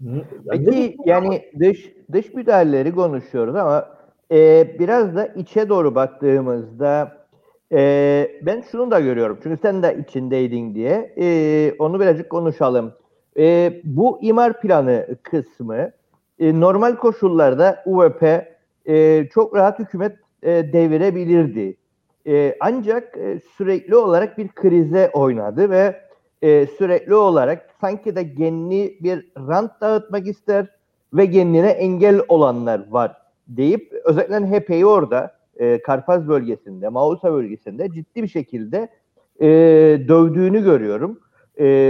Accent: native